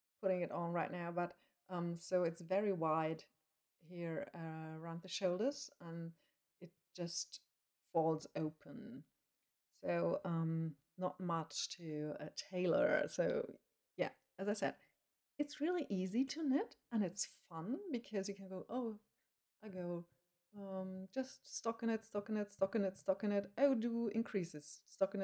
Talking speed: 145 wpm